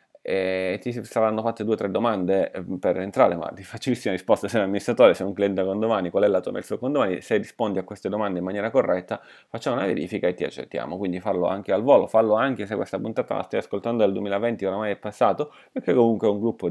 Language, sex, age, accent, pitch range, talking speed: Italian, male, 30-49, native, 95-115 Hz, 240 wpm